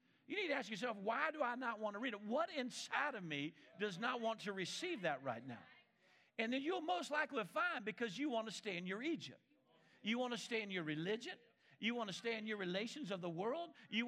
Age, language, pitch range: 50-69, English, 210-295 Hz